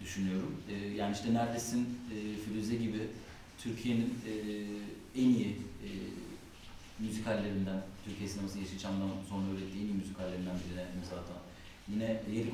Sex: male